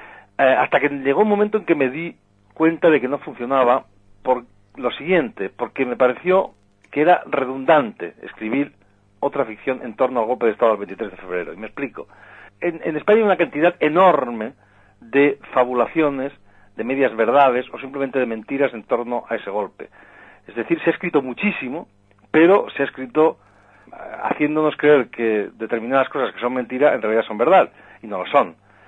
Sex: male